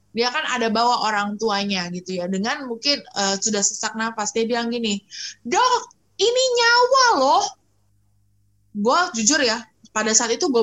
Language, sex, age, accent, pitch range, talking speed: Indonesian, female, 20-39, native, 195-320 Hz, 160 wpm